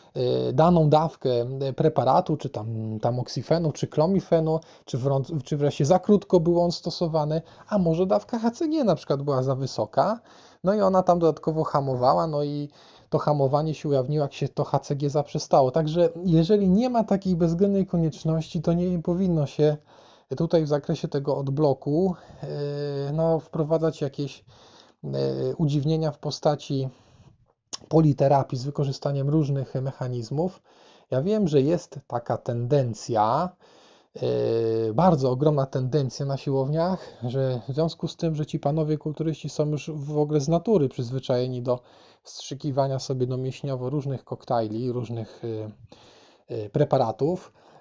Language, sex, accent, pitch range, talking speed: Polish, male, native, 135-170 Hz, 135 wpm